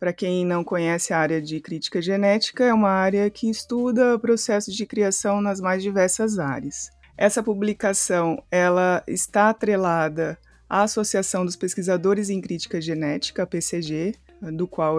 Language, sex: Portuguese, female